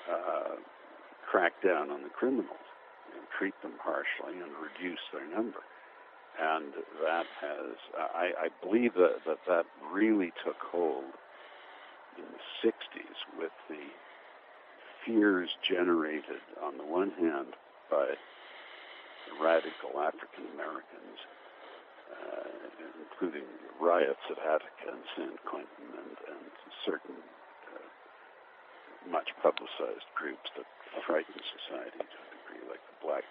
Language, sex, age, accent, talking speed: English, male, 60-79, American, 115 wpm